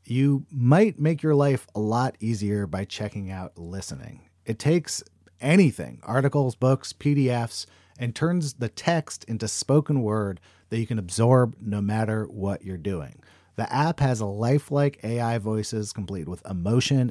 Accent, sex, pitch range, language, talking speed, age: American, male, 110-145 Hz, English, 155 wpm, 40-59